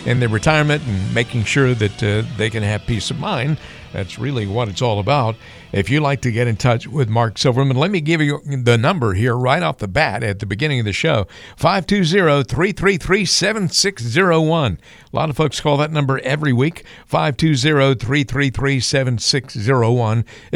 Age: 50-69